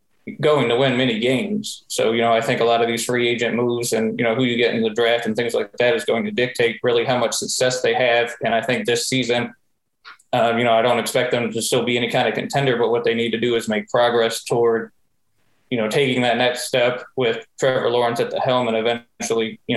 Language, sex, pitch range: English, male, 115-130 Hz